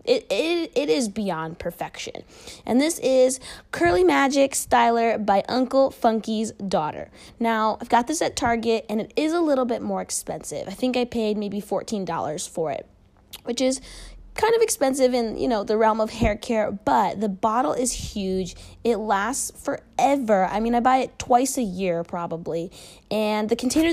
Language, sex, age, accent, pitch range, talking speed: English, female, 20-39, American, 200-255 Hz, 180 wpm